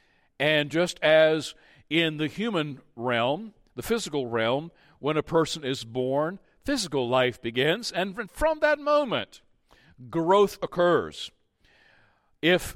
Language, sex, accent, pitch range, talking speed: English, male, American, 115-160 Hz, 120 wpm